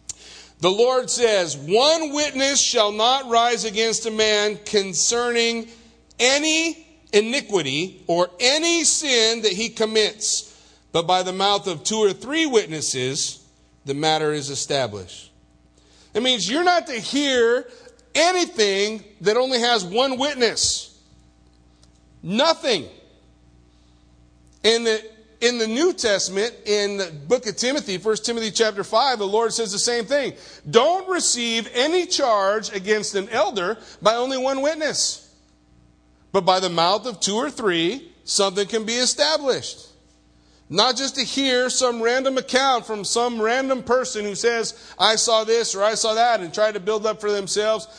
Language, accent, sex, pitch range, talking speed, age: English, American, male, 195-255 Hz, 145 wpm, 40-59